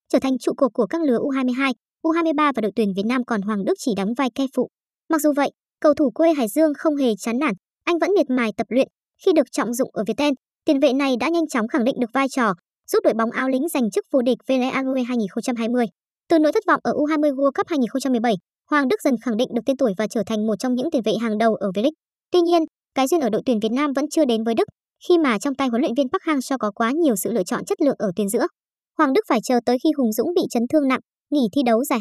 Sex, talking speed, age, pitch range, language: male, 275 wpm, 20-39, 230-300 Hz, Vietnamese